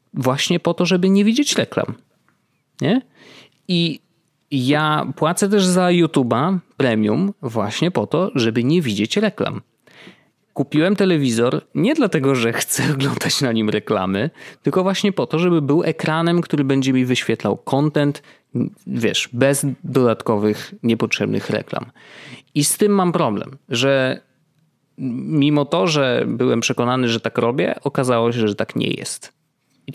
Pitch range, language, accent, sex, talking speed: 120-165 Hz, Polish, native, male, 140 wpm